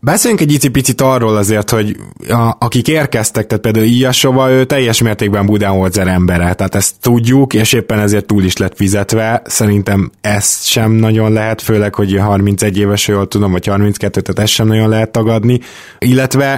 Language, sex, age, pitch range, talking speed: Hungarian, male, 20-39, 100-115 Hz, 175 wpm